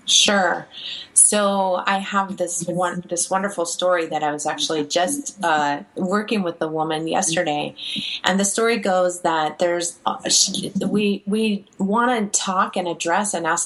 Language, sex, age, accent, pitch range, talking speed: English, female, 30-49, American, 175-210 Hz, 155 wpm